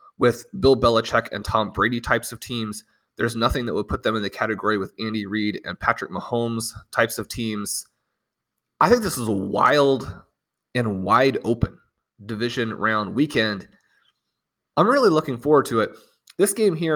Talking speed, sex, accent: 170 wpm, male, American